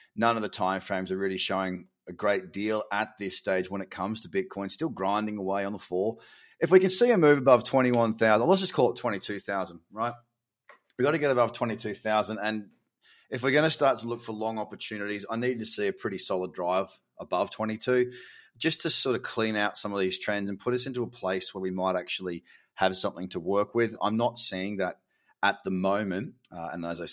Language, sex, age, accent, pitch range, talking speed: English, male, 30-49, Australian, 100-125 Hz, 225 wpm